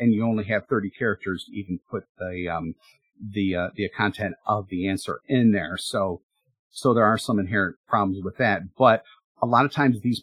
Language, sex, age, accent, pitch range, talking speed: English, male, 50-69, American, 100-130 Hz, 205 wpm